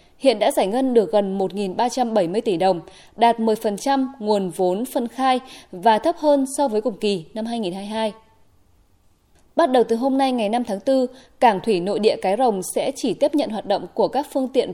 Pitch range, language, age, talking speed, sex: 200-255 Hz, Vietnamese, 20-39, 200 wpm, female